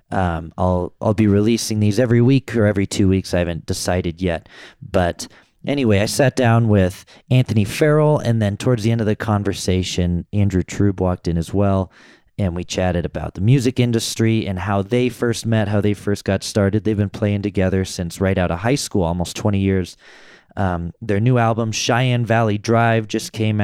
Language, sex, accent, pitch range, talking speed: English, male, American, 90-115 Hz, 195 wpm